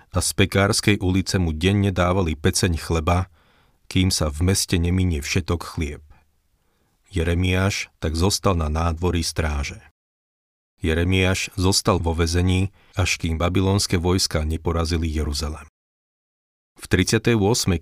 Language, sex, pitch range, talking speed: Slovak, male, 80-95 Hz, 115 wpm